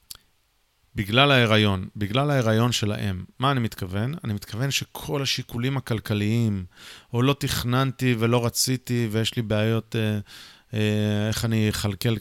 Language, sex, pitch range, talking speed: Hebrew, male, 110-135 Hz, 135 wpm